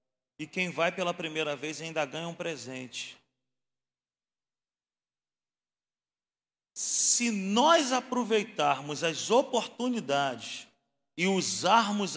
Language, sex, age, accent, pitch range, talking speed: Portuguese, male, 40-59, Brazilian, 170-235 Hz, 85 wpm